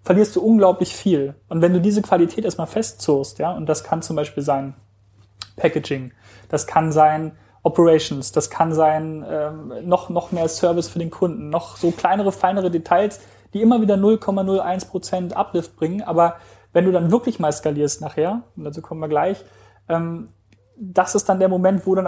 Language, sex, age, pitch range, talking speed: German, male, 30-49, 155-190 Hz, 180 wpm